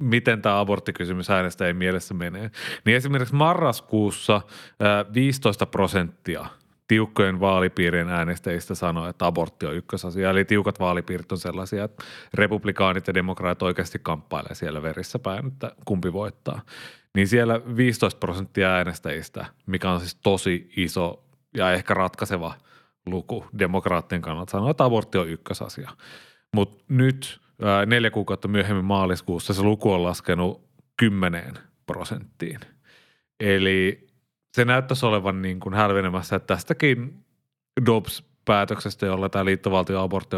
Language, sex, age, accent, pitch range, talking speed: Finnish, male, 30-49, native, 90-105 Hz, 125 wpm